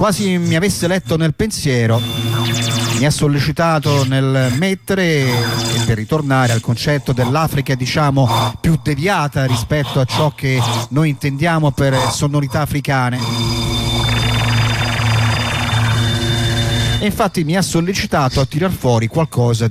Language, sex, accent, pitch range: Italian, male, native, 120-165 Hz